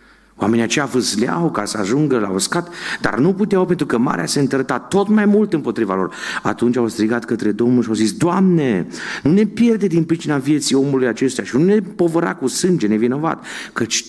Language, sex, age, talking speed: Romanian, male, 50-69, 195 wpm